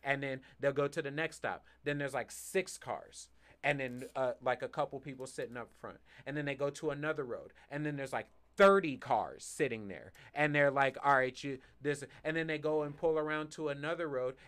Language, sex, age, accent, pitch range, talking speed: English, male, 30-49, American, 120-145 Hz, 230 wpm